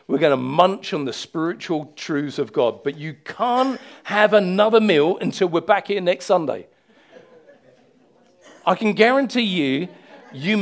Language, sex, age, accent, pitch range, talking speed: English, male, 50-69, British, 155-210 Hz, 155 wpm